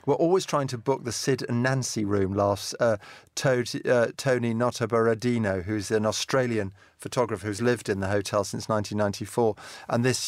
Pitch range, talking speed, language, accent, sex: 105-120 Hz, 170 wpm, English, British, male